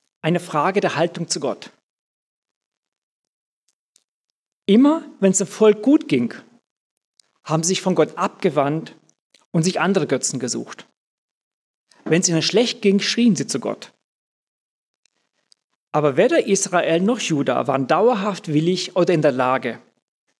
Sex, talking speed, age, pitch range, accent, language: male, 130 wpm, 40-59, 155-200 Hz, German, German